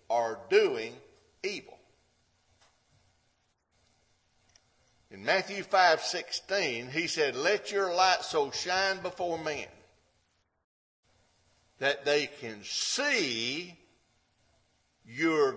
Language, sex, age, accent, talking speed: English, male, 50-69, American, 80 wpm